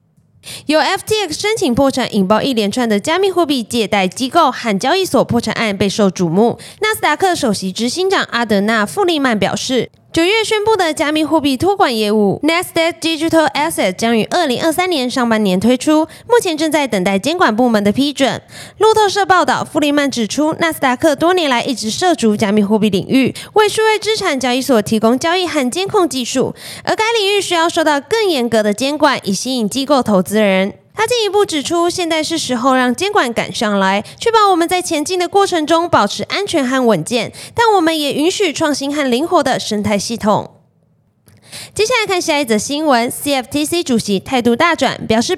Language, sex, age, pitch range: Chinese, female, 20-39, 225-350 Hz